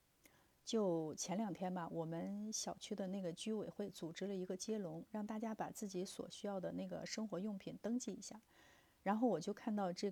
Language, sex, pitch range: Chinese, female, 180-220 Hz